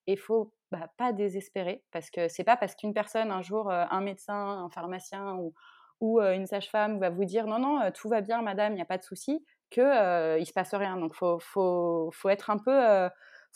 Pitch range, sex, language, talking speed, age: 180-225 Hz, female, French, 270 wpm, 20-39